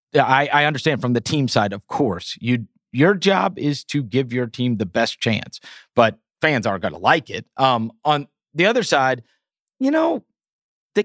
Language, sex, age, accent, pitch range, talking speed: English, male, 40-59, American, 125-170 Hz, 185 wpm